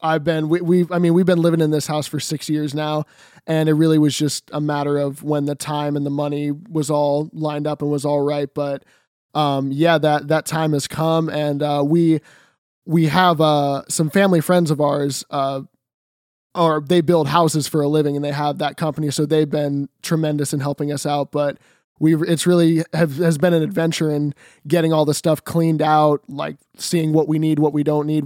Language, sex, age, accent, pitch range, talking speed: English, male, 20-39, American, 145-165 Hz, 215 wpm